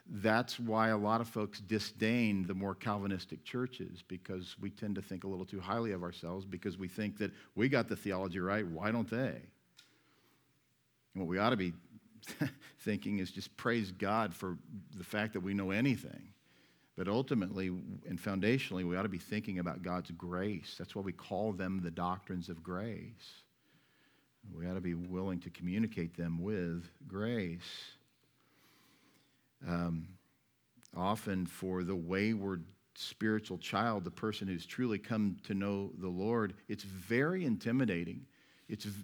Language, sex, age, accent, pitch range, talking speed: English, male, 50-69, American, 90-110 Hz, 160 wpm